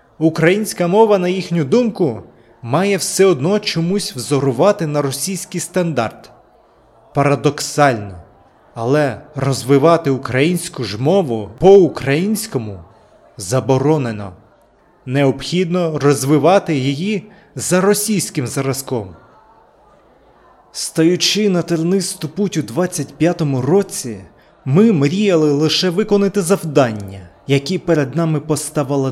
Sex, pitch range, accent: male, 130-180 Hz, native